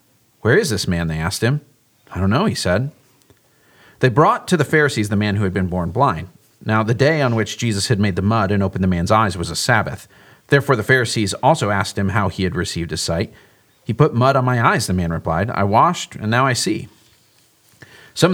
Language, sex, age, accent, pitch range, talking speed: English, male, 40-59, American, 100-145 Hz, 230 wpm